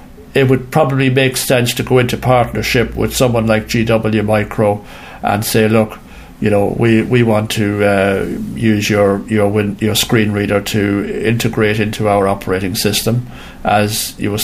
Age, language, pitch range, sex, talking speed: 60-79, English, 105-125 Hz, male, 165 wpm